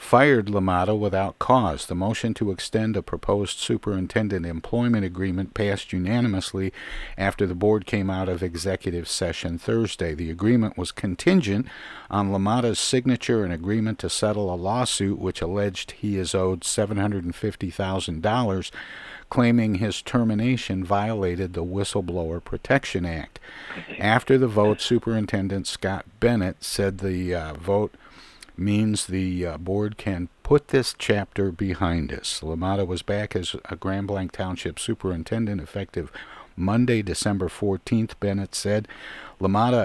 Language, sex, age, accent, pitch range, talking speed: English, male, 50-69, American, 95-110 Hz, 130 wpm